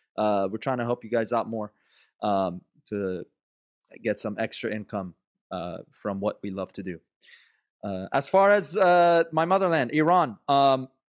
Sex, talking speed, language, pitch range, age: male, 170 wpm, English, 110-160 Hz, 30-49